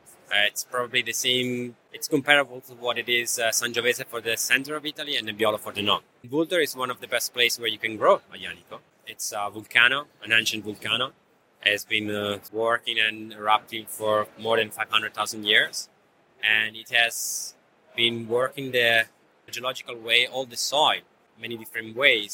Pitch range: 110-130 Hz